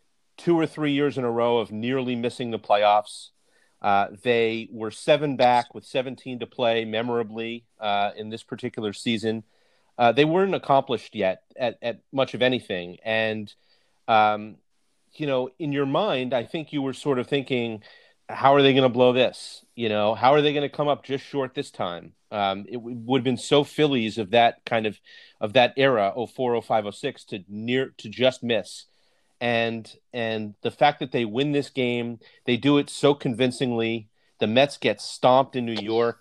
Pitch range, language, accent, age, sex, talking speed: 110-135 Hz, English, American, 30-49, male, 195 wpm